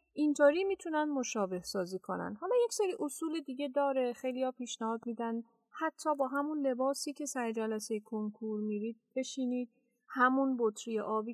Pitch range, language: 215-270 Hz, Persian